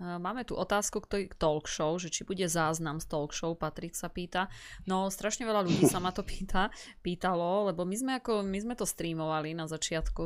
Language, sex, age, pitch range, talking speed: Slovak, female, 20-39, 160-180 Hz, 205 wpm